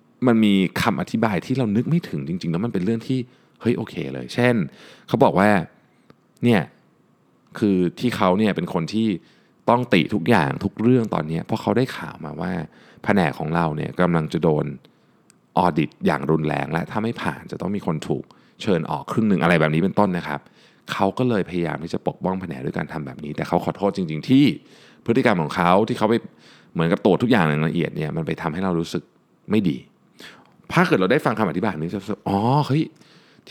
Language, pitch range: Thai, 80-110 Hz